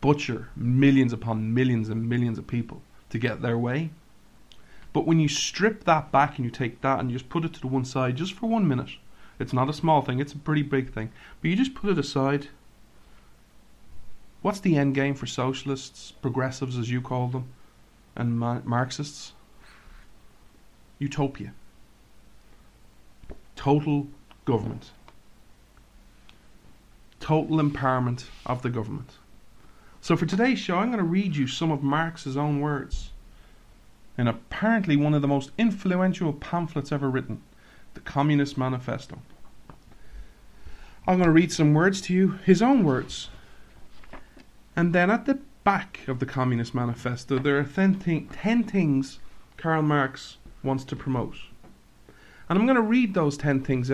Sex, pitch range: male, 125-165 Hz